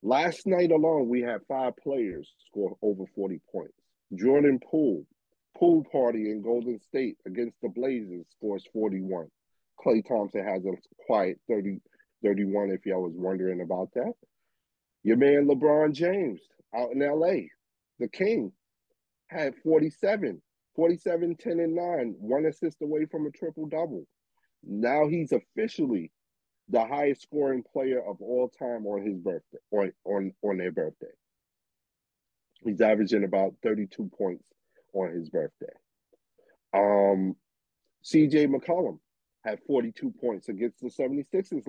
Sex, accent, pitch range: male, American, 105-160 Hz